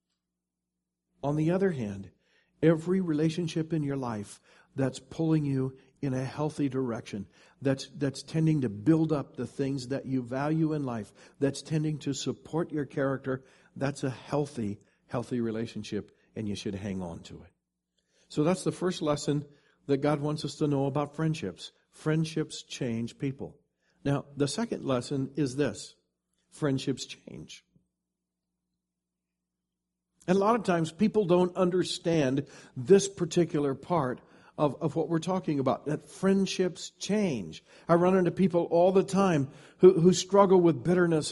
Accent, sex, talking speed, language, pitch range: American, male, 150 wpm, English, 130-180 Hz